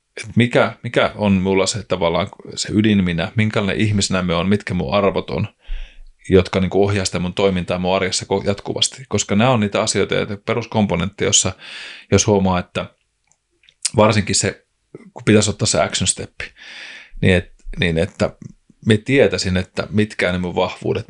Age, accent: 30-49, native